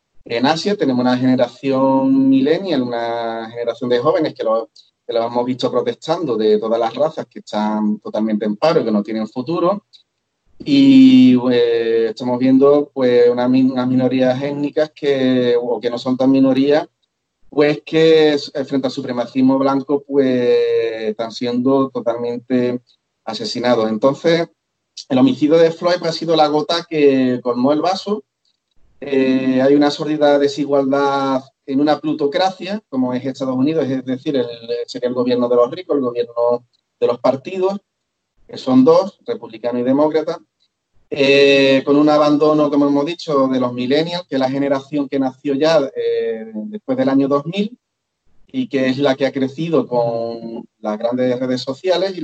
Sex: male